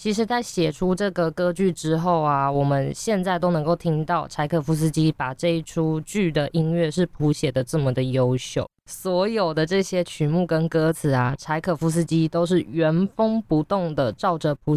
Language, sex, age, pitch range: Chinese, female, 20-39, 150-190 Hz